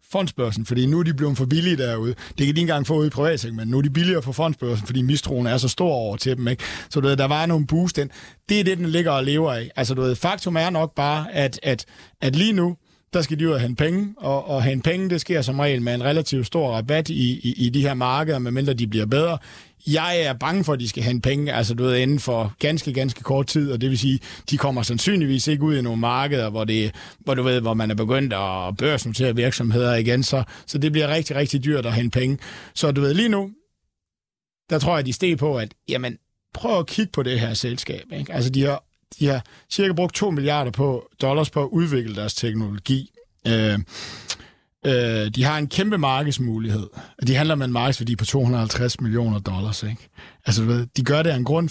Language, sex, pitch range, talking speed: Danish, male, 120-155 Hz, 245 wpm